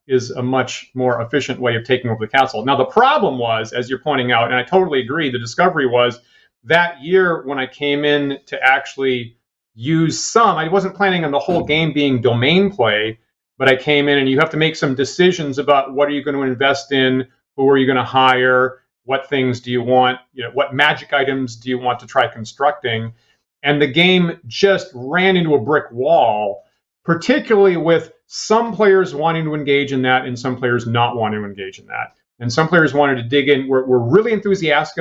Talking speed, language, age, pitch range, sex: 215 wpm, English, 40-59, 130-170 Hz, male